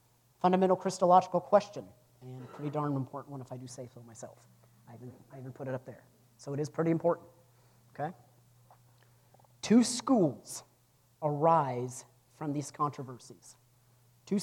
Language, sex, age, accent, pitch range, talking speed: English, male, 40-59, American, 125-165 Hz, 140 wpm